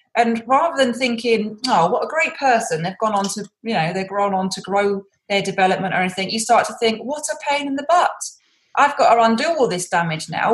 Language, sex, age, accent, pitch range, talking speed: English, female, 20-39, British, 170-220 Hz, 240 wpm